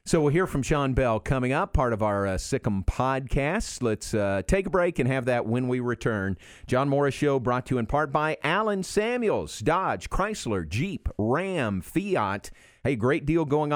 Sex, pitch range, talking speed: male, 105-140 Hz, 195 wpm